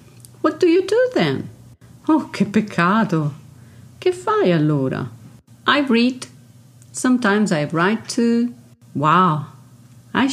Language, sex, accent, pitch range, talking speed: Italian, female, native, 135-220 Hz, 110 wpm